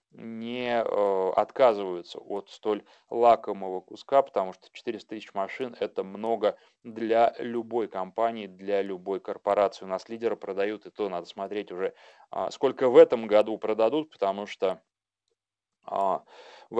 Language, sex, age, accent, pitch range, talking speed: Russian, male, 30-49, native, 100-125 Hz, 135 wpm